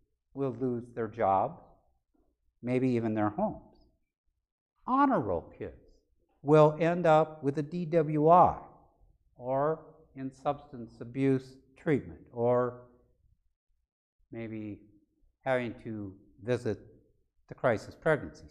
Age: 60-79